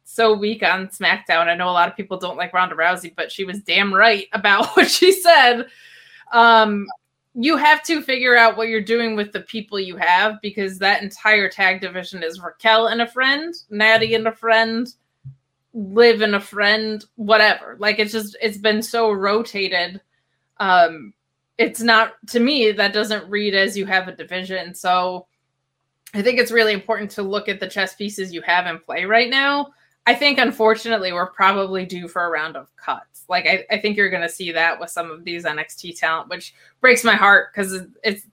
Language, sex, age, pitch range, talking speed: English, female, 20-39, 180-225 Hz, 195 wpm